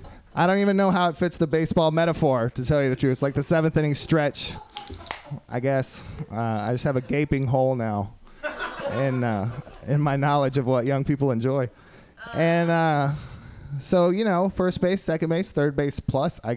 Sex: male